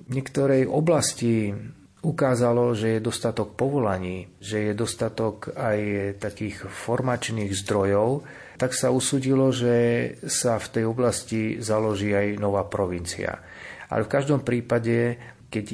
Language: Slovak